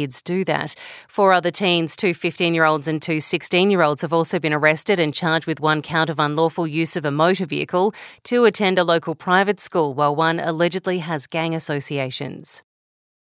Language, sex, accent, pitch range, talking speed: English, female, Australian, 160-190 Hz, 190 wpm